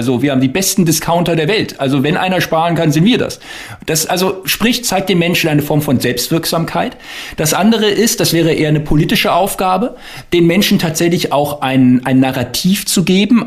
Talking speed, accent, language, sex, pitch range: 195 wpm, German, German, male, 130-170 Hz